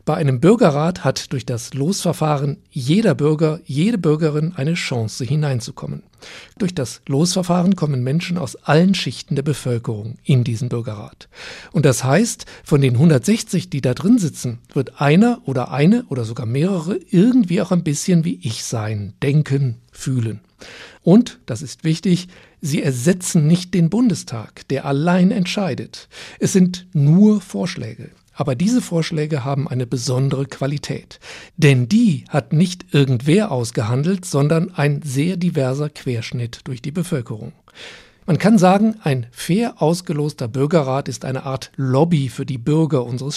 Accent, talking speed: German, 145 wpm